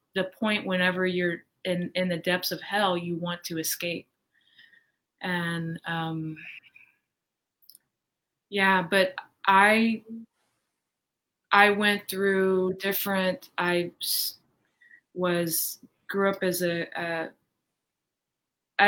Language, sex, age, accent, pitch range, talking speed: English, female, 20-39, American, 175-200 Hz, 95 wpm